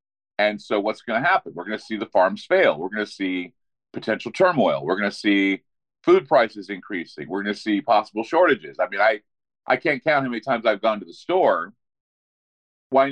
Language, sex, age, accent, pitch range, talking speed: English, male, 40-59, American, 105-145 Hz, 215 wpm